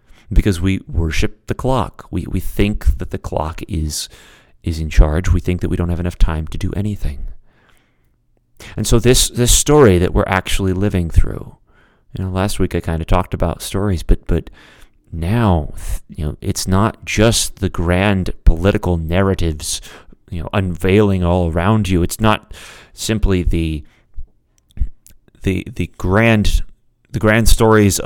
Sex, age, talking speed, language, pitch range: male, 30-49, 160 wpm, English, 85-110 Hz